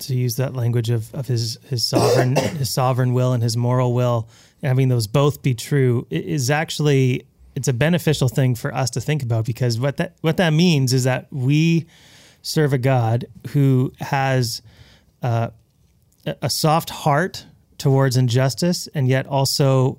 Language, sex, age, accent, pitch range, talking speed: English, male, 30-49, American, 125-145 Hz, 165 wpm